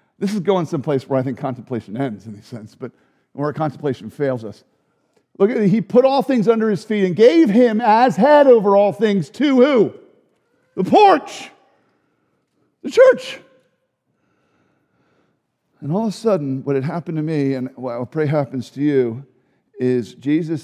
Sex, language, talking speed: male, English, 175 wpm